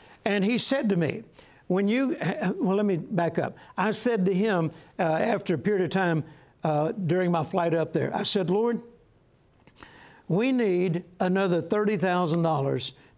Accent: American